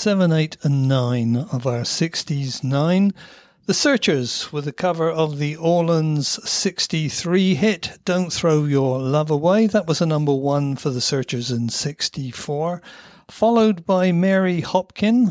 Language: English